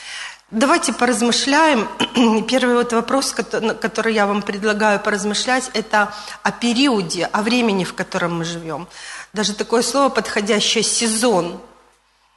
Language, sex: Russian, female